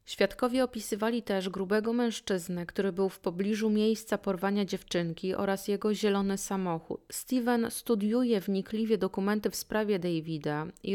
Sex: female